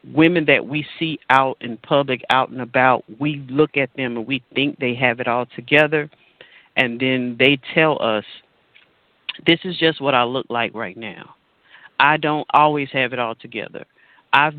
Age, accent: 40-59, American